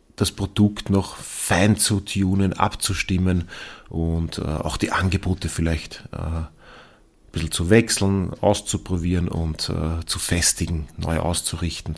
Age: 30-49